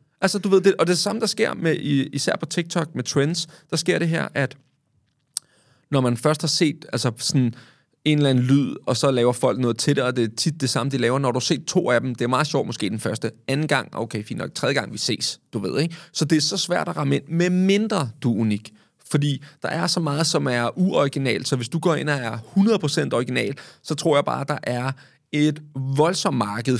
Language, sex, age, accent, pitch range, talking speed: Danish, male, 30-49, native, 120-155 Hz, 250 wpm